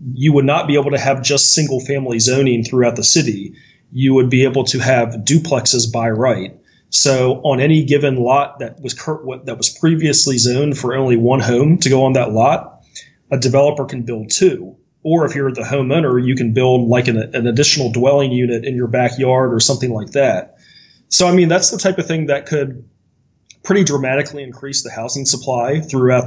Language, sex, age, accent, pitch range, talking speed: English, male, 30-49, American, 125-145 Hz, 195 wpm